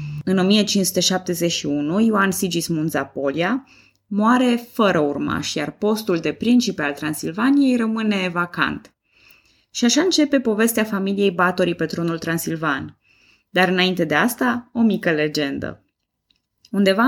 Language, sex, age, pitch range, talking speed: Romanian, female, 20-39, 160-225 Hz, 115 wpm